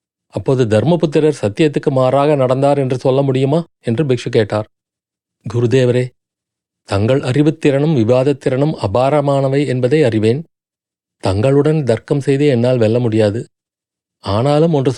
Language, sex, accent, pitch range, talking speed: Tamil, male, native, 115-150 Hz, 105 wpm